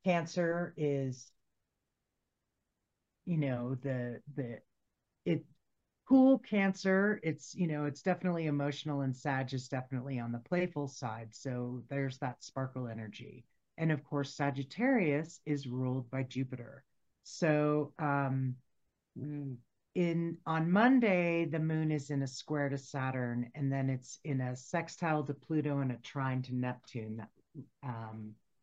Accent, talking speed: American, 135 wpm